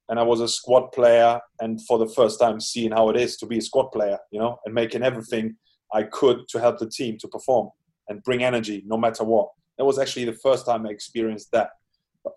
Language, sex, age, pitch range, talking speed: English, male, 20-39, 110-120 Hz, 240 wpm